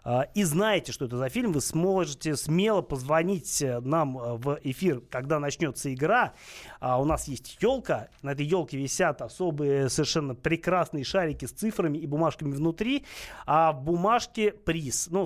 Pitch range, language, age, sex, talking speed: 135-175 Hz, Russian, 30-49, male, 150 wpm